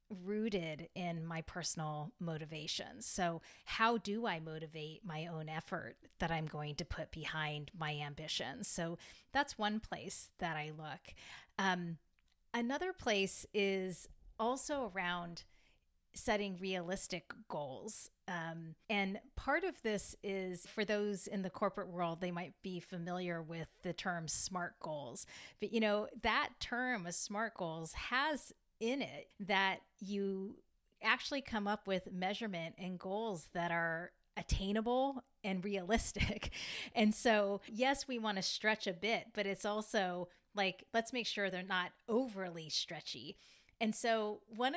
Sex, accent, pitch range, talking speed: female, American, 175-220 Hz, 140 wpm